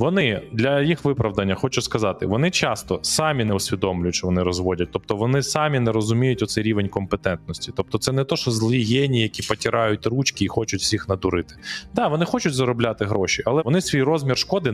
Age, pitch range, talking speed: 20-39, 100-130 Hz, 190 wpm